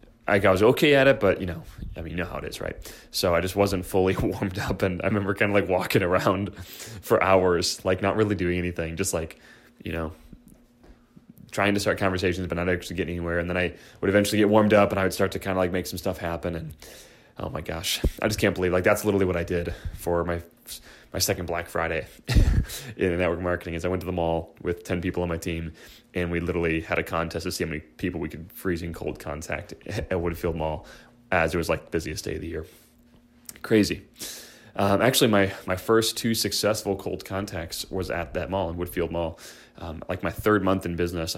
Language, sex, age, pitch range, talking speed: English, male, 20-39, 85-100 Hz, 230 wpm